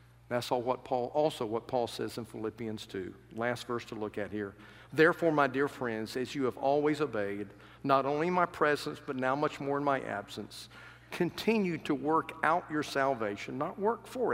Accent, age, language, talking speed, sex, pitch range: American, 50-69, English, 185 wpm, male, 115-150 Hz